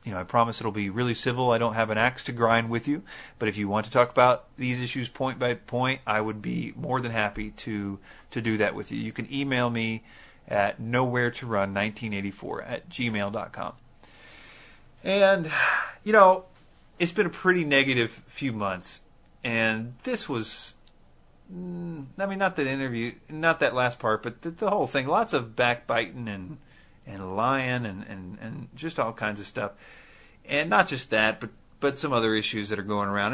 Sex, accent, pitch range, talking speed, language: male, American, 110-145 Hz, 185 wpm, English